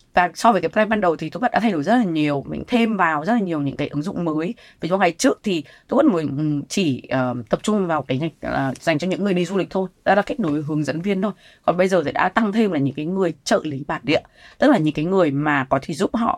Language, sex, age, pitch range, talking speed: Vietnamese, female, 20-39, 140-190 Hz, 305 wpm